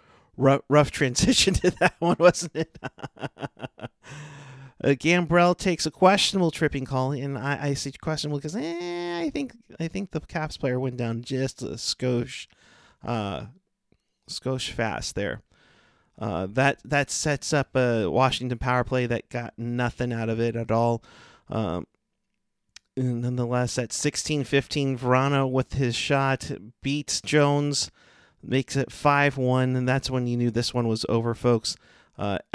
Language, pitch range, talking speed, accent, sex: English, 120-145 Hz, 150 wpm, American, male